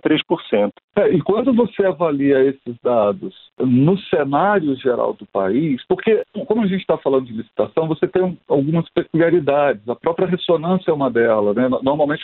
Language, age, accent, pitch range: Portuguese, 50-69, Brazilian, 135-185 Hz